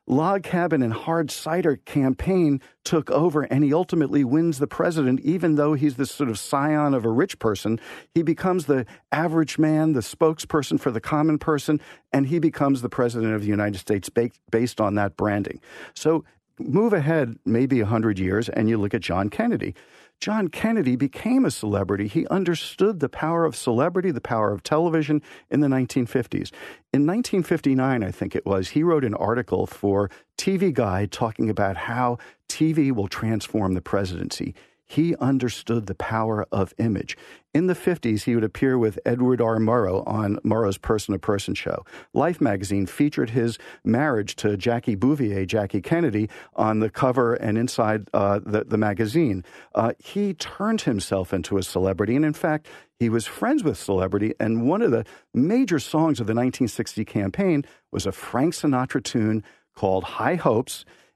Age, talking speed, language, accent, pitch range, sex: 50-69, 170 wpm, English, American, 110-155 Hz, male